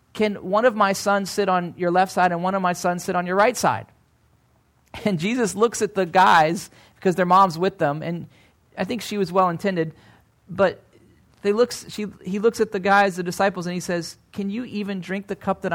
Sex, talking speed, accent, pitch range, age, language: male, 210 wpm, American, 160-205 Hz, 40-59, English